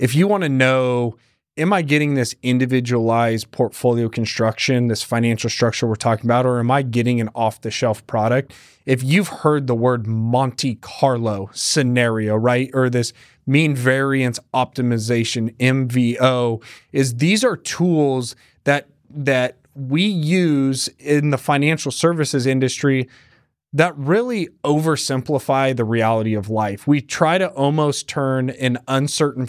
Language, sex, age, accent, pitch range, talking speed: English, male, 30-49, American, 120-140 Hz, 140 wpm